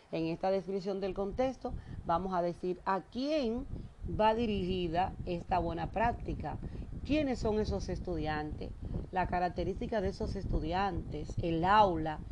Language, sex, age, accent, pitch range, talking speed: Spanish, female, 40-59, American, 165-220 Hz, 125 wpm